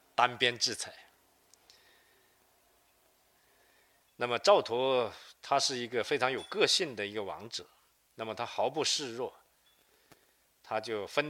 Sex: male